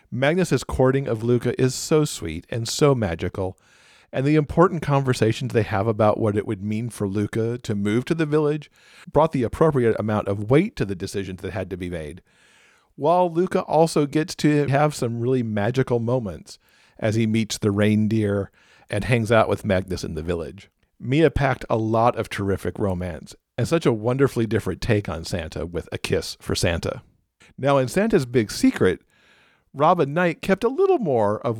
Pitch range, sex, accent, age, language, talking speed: 105-140 Hz, male, American, 50-69, English, 185 wpm